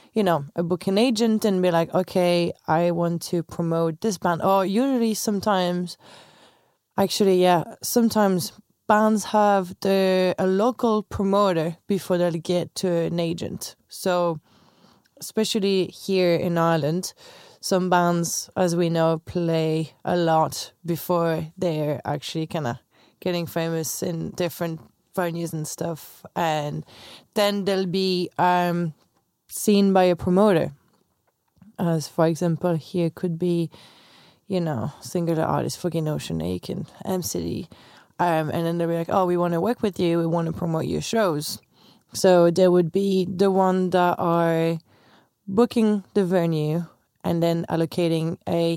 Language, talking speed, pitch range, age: English, 145 wpm, 165-190 Hz, 20-39